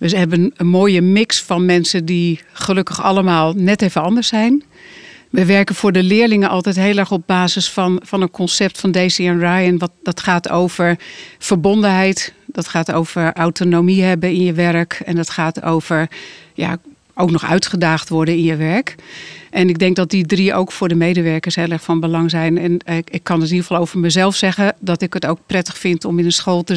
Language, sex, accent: Dutch, female, Dutch